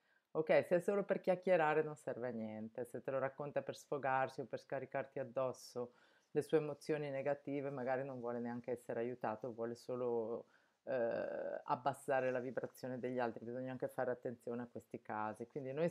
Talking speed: 175 wpm